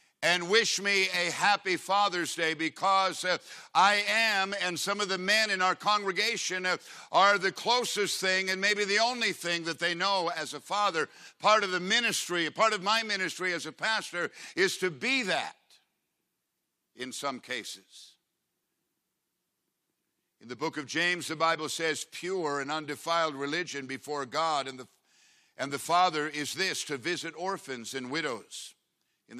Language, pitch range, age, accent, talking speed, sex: English, 125-185 Hz, 60-79, American, 160 wpm, male